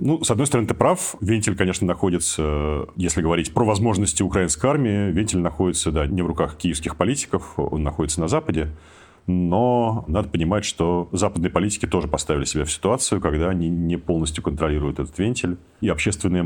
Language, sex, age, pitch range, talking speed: Russian, male, 40-59, 80-100 Hz, 170 wpm